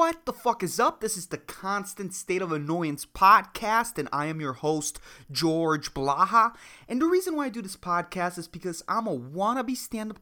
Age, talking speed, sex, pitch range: 20-39, 200 wpm, male, 160-260 Hz